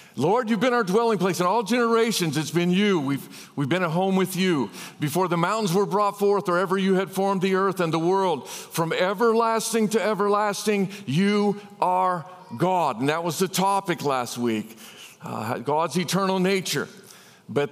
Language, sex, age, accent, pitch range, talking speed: English, male, 50-69, American, 145-195 Hz, 185 wpm